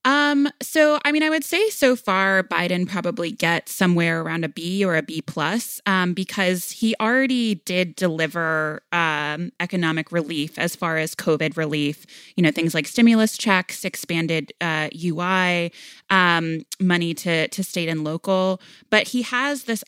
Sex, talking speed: female, 165 wpm